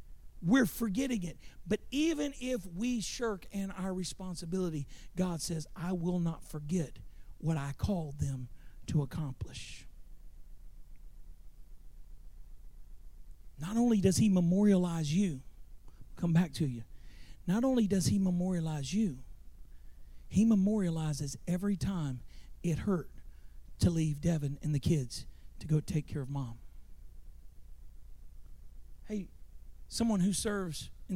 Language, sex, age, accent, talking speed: English, male, 40-59, American, 120 wpm